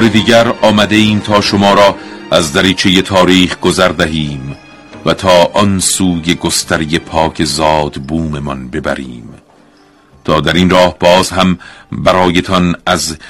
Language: Persian